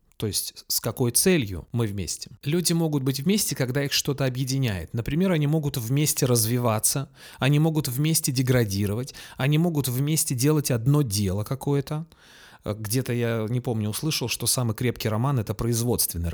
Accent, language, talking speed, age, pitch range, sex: native, Russian, 160 wpm, 30-49, 115-145 Hz, male